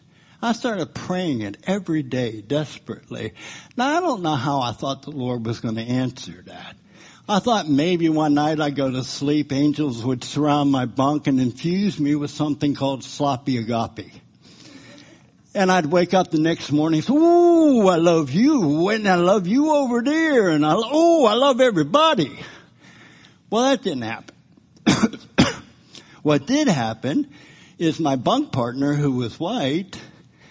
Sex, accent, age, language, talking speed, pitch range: male, American, 60-79, English, 160 wpm, 130-185 Hz